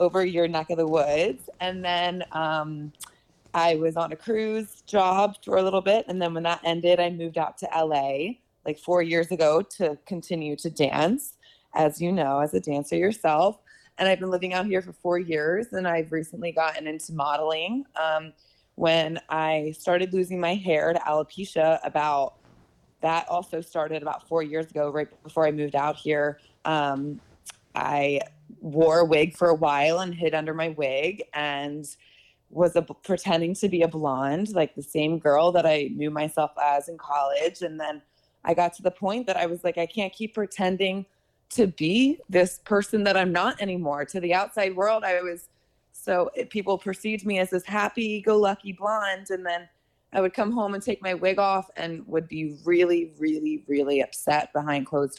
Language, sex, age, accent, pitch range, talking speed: English, female, 20-39, American, 155-185 Hz, 185 wpm